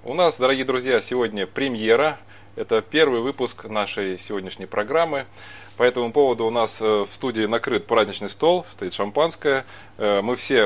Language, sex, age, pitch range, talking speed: Russian, male, 20-39, 100-130 Hz, 145 wpm